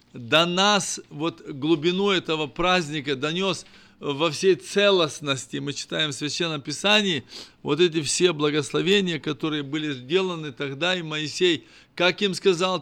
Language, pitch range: Russian, 150-185 Hz